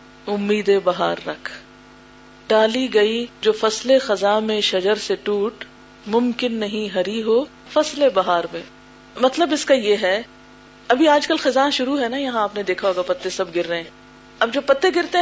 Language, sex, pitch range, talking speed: Urdu, female, 210-285 Hz, 180 wpm